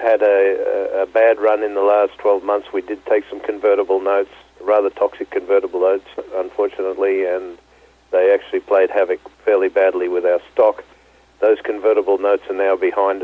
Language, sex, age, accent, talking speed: English, male, 50-69, Australian, 170 wpm